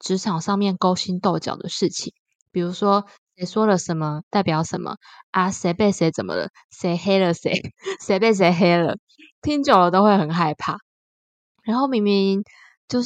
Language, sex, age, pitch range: Chinese, female, 20-39, 170-215 Hz